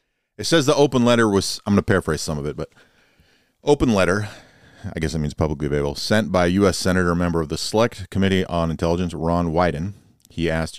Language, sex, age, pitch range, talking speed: English, male, 30-49, 80-95 Hz, 215 wpm